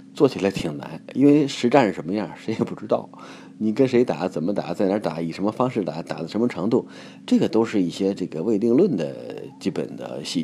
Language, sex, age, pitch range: Chinese, male, 30-49, 85-115 Hz